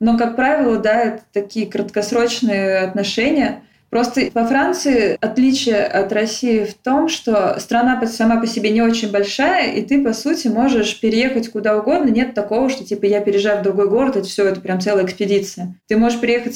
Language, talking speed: Russian, 180 wpm